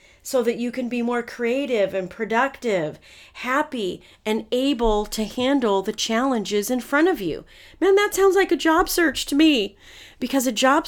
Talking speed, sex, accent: 175 wpm, female, American